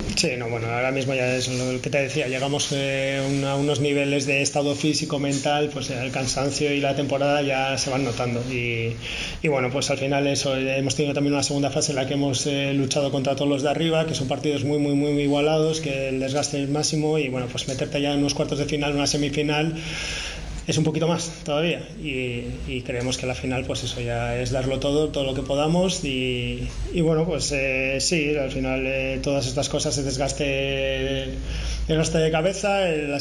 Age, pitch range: 20-39, 135-150 Hz